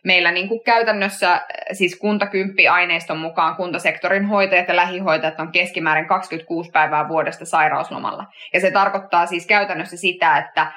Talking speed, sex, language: 135 wpm, female, Finnish